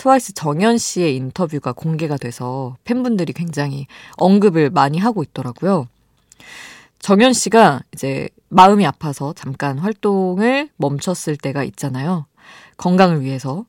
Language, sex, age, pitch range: Korean, female, 20-39, 140-205 Hz